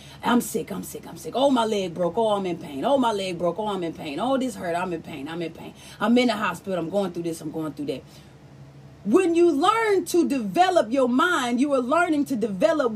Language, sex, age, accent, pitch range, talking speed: English, female, 30-49, American, 235-315 Hz, 255 wpm